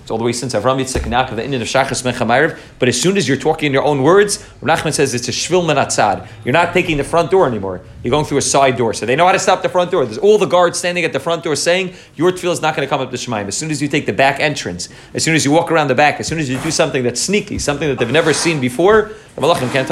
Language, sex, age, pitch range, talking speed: English, male, 30-49, 130-175 Hz, 290 wpm